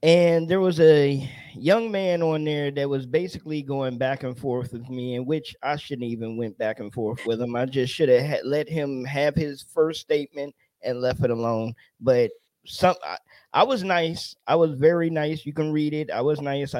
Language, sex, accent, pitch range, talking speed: English, male, American, 130-165 Hz, 215 wpm